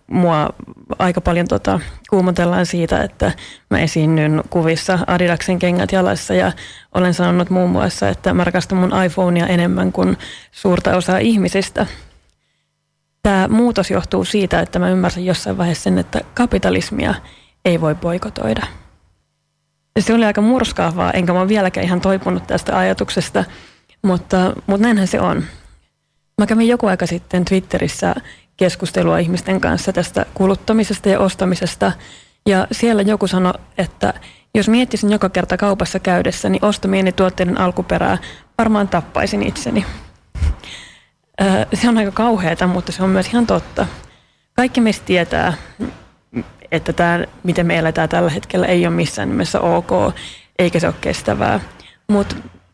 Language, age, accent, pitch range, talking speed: Finnish, 20-39, native, 175-200 Hz, 135 wpm